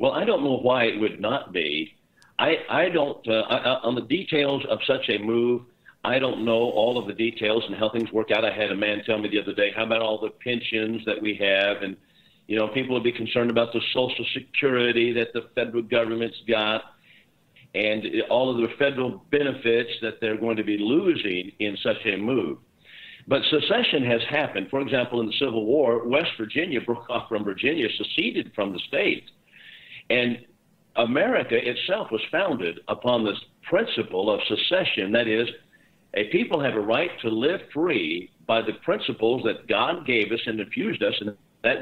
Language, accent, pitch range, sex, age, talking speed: English, American, 110-130 Hz, male, 50-69, 190 wpm